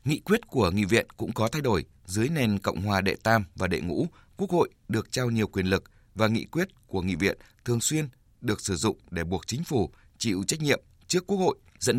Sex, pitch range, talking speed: male, 95-125 Hz, 235 wpm